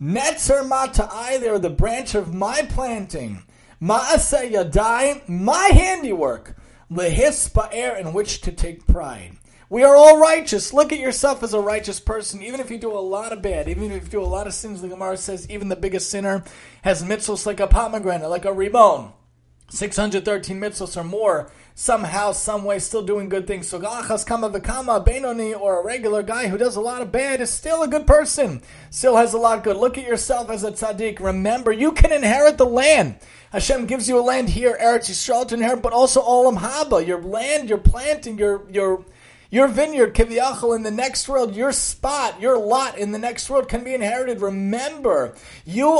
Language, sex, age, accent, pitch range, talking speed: English, male, 30-49, American, 205-260 Hz, 200 wpm